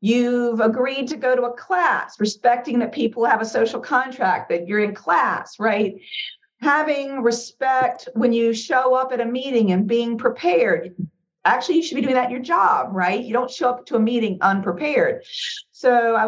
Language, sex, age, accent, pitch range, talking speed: English, female, 50-69, American, 185-245 Hz, 185 wpm